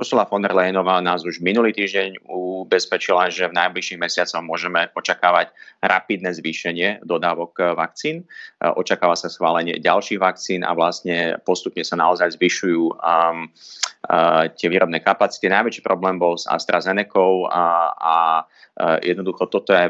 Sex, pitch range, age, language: male, 85-95 Hz, 30-49, Slovak